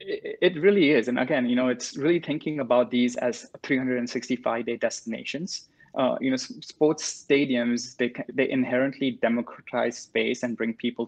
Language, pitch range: English, 120-135 Hz